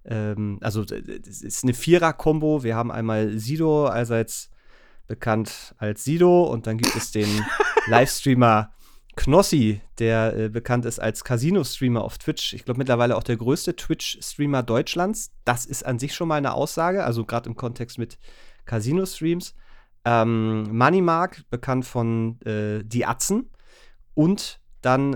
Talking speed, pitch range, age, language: 140 wpm, 110-140 Hz, 30-49, German